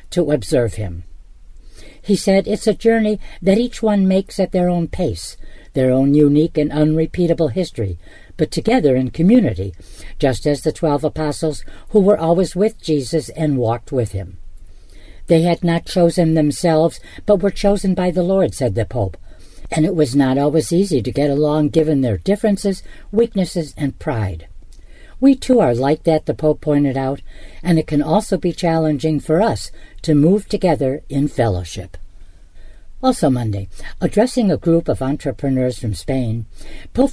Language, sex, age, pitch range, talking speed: English, female, 60-79, 125-180 Hz, 165 wpm